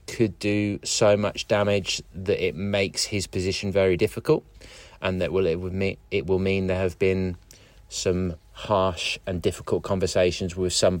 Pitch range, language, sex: 85-100 Hz, English, male